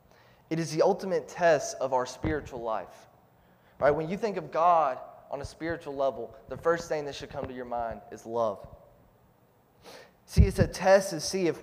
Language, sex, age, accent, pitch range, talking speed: English, male, 20-39, American, 145-185 Hz, 190 wpm